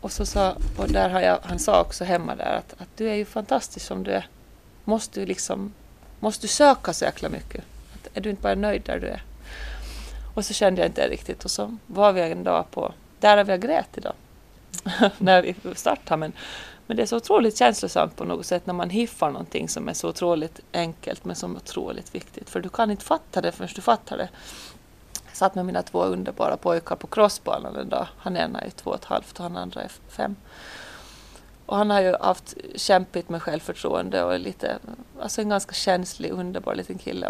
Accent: native